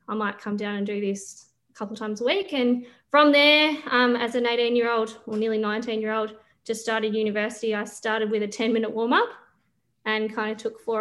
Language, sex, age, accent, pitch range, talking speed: English, female, 20-39, Australian, 205-230 Hz, 230 wpm